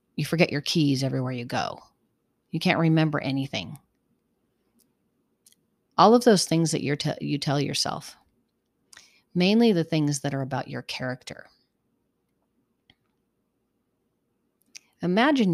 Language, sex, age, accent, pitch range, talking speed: English, female, 40-59, American, 135-165 Hz, 115 wpm